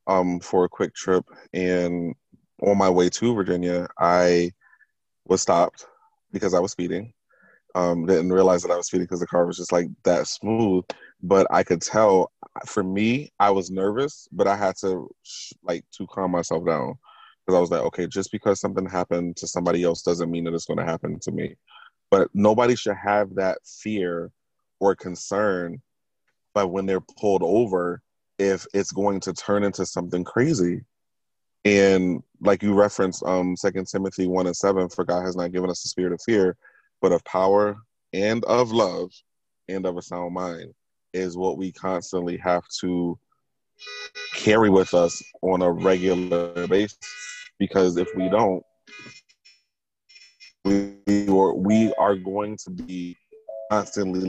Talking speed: 160 wpm